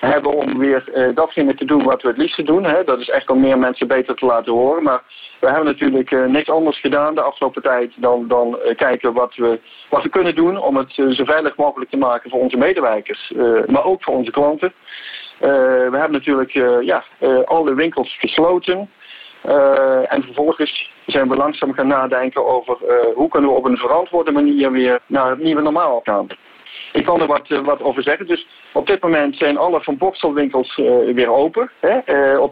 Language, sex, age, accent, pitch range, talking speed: Dutch, male, 50-69, Dutch, 125-165 Hz, 185 wpm